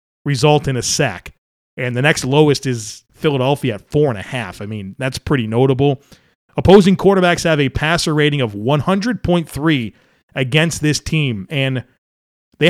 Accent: American